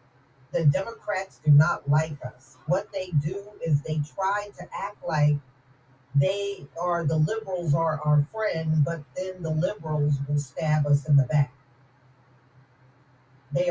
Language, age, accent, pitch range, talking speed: English, 40-59, American, 140-175 Hz, 145 wpm